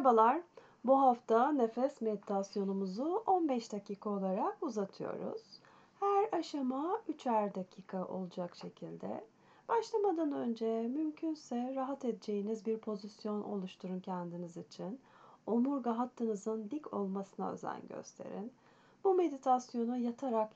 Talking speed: 100 wpm